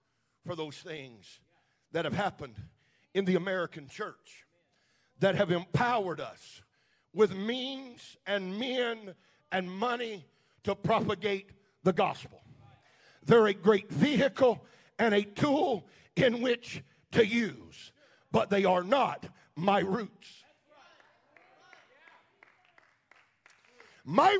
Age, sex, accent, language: 50-69, male, American, English